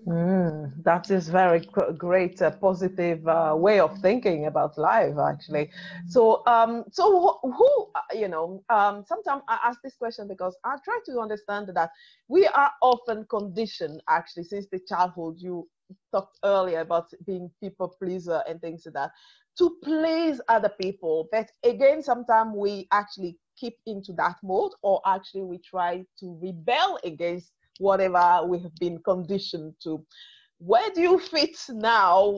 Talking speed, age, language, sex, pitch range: 155 wpm, 30-49, English, female, 180-245 Hz